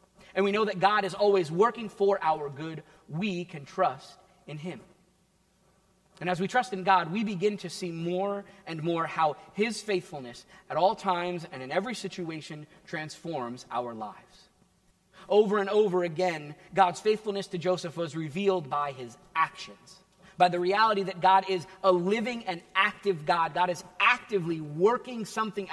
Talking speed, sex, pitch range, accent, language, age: 165 wpm, male, 175-205 Hz, American, English, 30-49